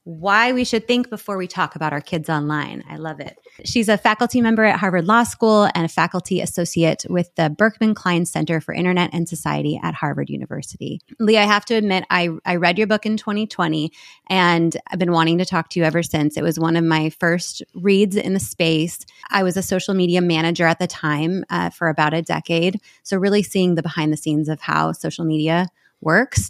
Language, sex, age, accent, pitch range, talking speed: English, female, 30-49, American, 160-190 Hz, 215 wpm